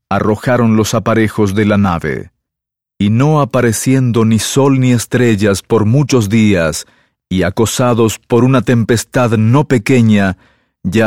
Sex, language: male, English